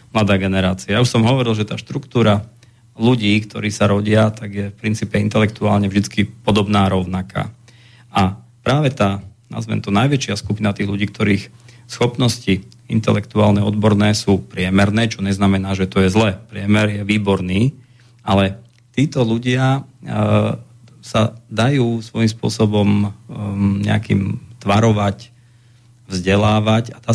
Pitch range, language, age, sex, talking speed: 100-120 Hz, Slovak, 40-59, male, 125 wpm